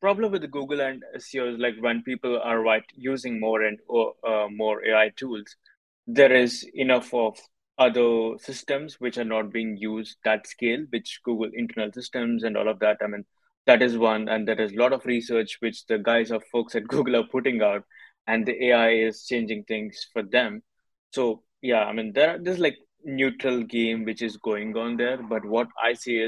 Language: English